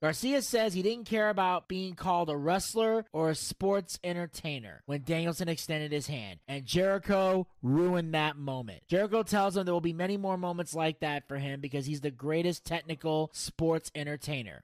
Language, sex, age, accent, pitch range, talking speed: English, male, 30-49, American, 140-175 Hz, 180 wpm